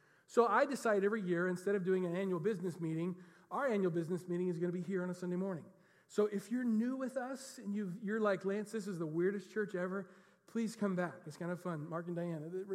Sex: male